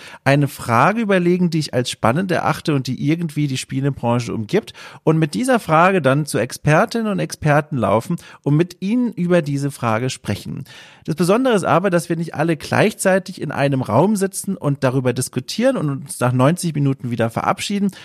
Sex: male